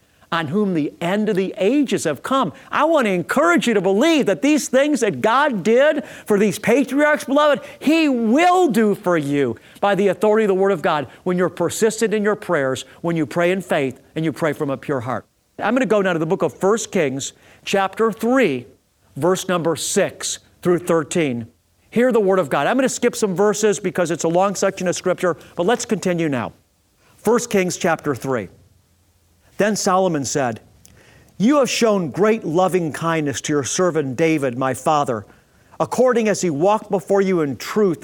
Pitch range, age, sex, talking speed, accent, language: 150-215 Hz, 50-69, male, 190 wpm, American, English